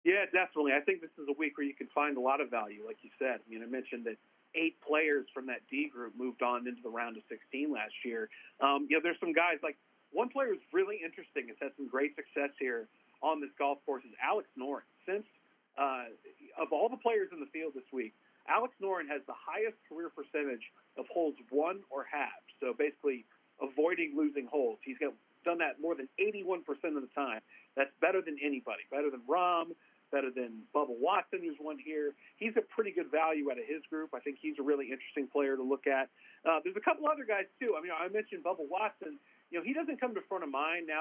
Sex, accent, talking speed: male, American, 235 wpm